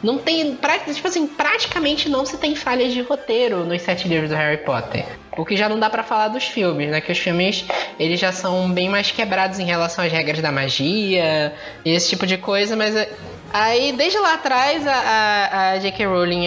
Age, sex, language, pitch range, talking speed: 10-29, female, Portuguese, 170-240 Hz, 210 wpm